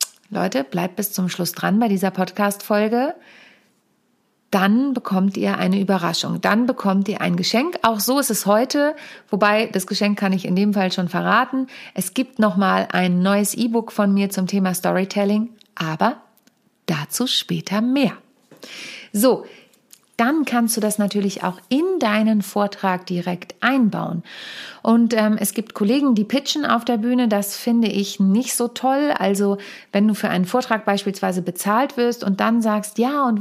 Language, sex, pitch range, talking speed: German, female, 190-230 Hz, 165 wpm